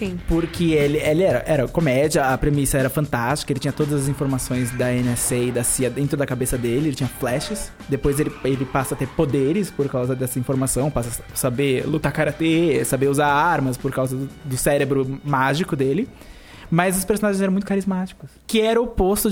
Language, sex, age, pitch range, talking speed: Portuguese, male, 20-39, 140-175 Hz, 195 wpm